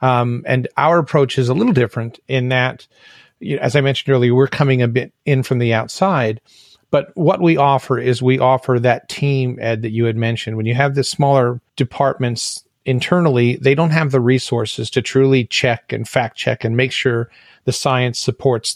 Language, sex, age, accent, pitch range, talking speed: English, male, 40-59, American, 120-140 Hz, 200 wpm